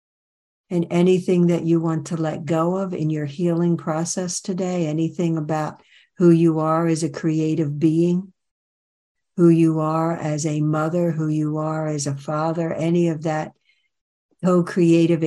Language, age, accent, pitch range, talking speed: English, 60-79, American, 155-170 Hz, 155 wpm